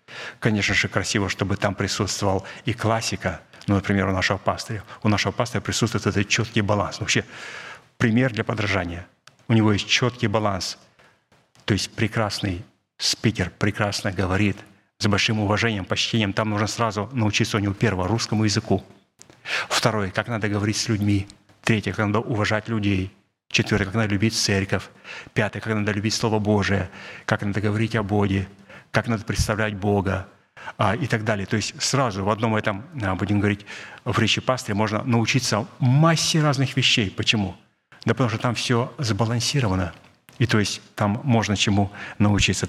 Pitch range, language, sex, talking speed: 100-115 Hz, Russian, male, 155 wpm